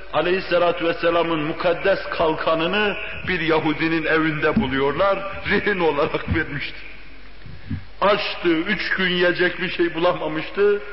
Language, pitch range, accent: Turkish, 165-205 Hz, native